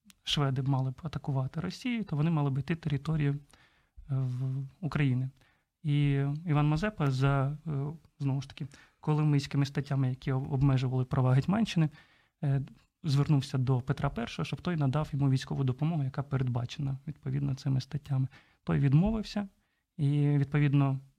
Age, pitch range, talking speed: 30-49, 135-155 Hz, 125 wpm